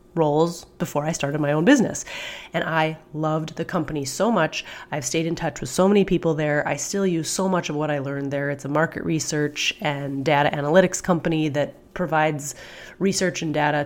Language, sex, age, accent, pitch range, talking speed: English, female, 30-49, American, 145-170 Hz, 200 wpm